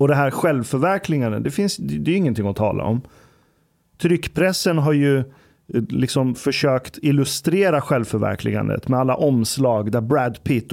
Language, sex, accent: Swedish, male, native